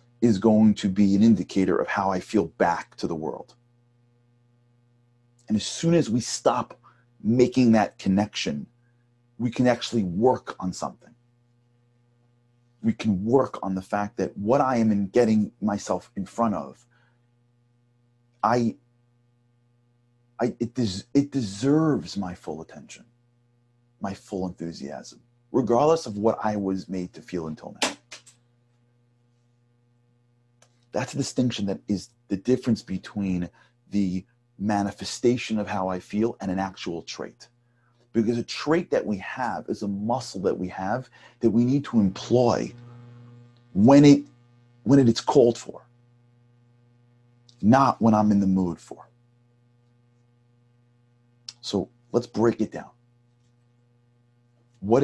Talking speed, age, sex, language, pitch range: 130 wpm, 40-59, male, English, 110-120 Hz